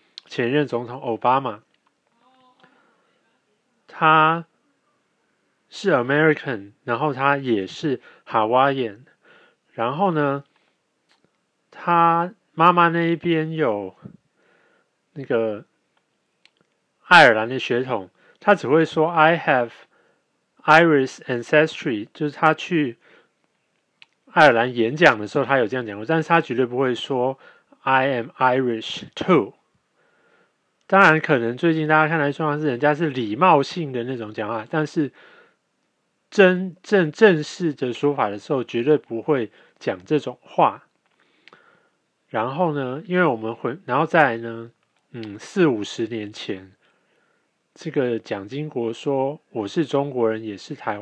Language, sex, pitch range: Chinese, male, 120-160 Hz